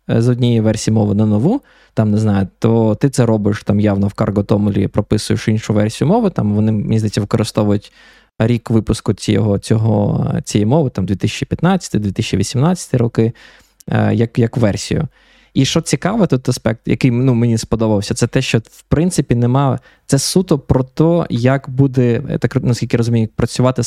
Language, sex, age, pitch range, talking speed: Ukrainian, male, 20-39, 110-135 Hz, 155 wpm